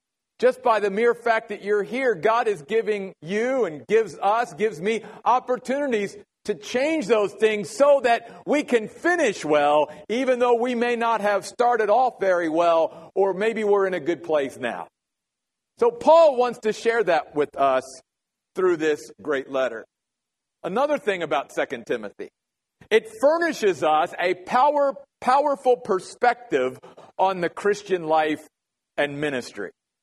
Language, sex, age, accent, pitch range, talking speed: English, male, 50-69, American, 175-240 Hz, 150 wpm